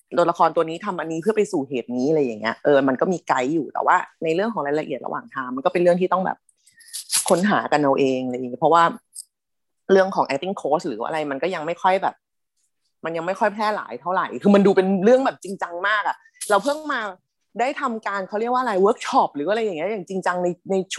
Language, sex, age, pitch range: Thai, female, 20-39, 160-225 Hz